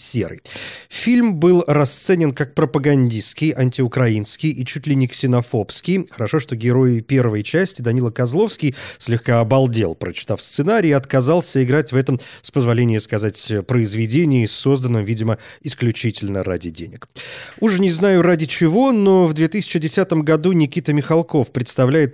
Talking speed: 130 wpm